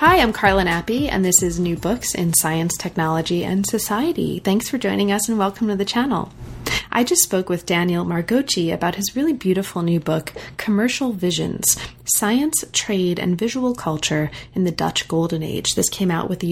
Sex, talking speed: female, 190 wpm